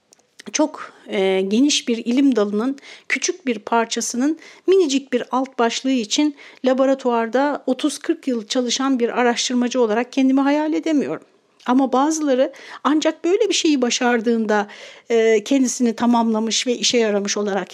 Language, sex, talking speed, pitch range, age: Turkish, female, 130 wpm, 220-275 Hz, 60-79